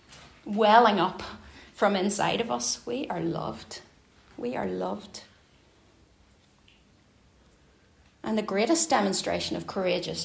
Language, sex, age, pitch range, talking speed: English, female, 30-49, 180-220 Hz, 105 wpm